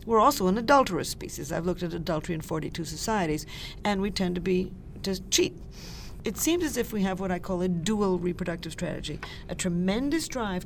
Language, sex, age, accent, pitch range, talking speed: English, female, 50-69, American, 170-215 Hz, 195 wpm